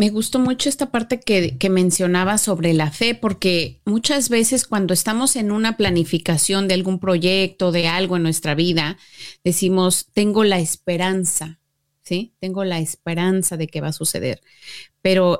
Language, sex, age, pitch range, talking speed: Spanish, female, 30-49, 170-200 Hz, 160 wpm